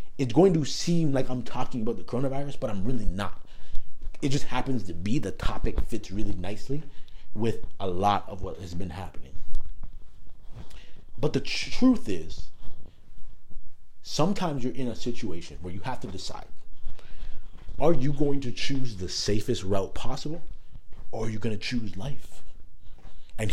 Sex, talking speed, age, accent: male, 160 wpm, 30-49, American